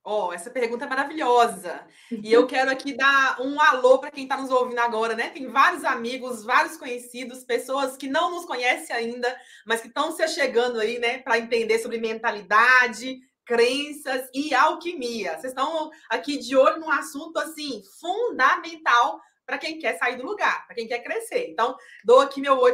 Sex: female